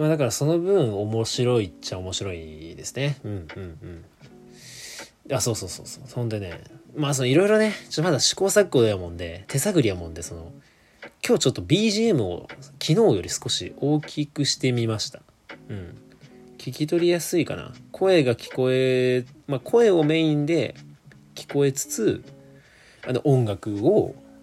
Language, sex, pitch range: Japanese, male, 100-140 Hz